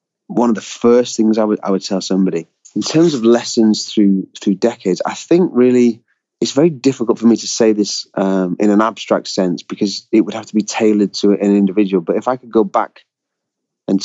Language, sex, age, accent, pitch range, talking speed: English, male, 30-49, British, 95-115 Hz, 220 wpm